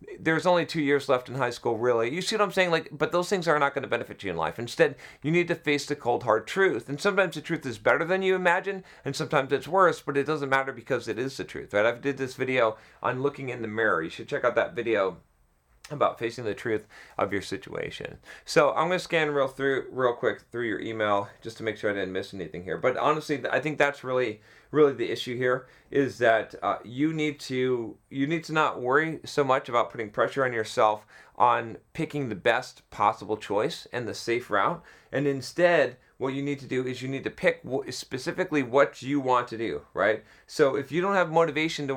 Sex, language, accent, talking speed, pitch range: male, English, American, 235 wpm, 120-155 Hz